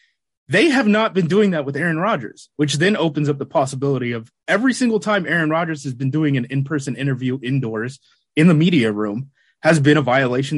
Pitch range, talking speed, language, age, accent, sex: 140-185 Hz, 205 wpm, English, 30-49, American, male